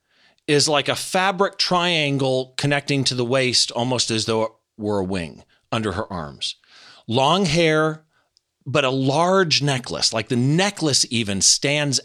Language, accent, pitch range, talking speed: English, American, 130-195 Hz, 150 wpm